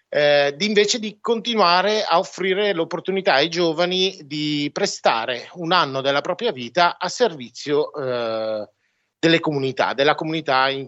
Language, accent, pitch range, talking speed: Italian, native, 120-165 Hz, 140 wpm